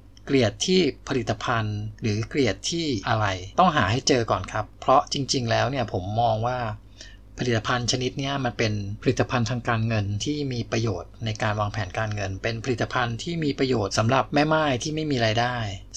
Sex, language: male, Thai